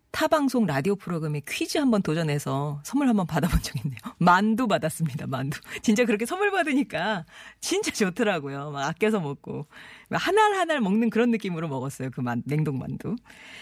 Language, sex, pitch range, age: Korean, female, 150-235 Hz, 40-59